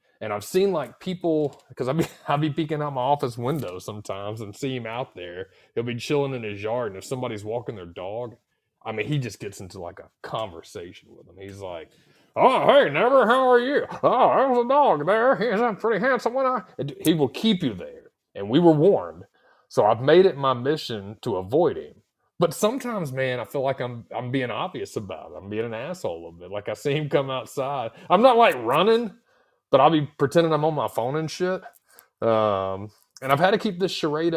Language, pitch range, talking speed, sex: English, 105-170 Hz, 220 wpm, male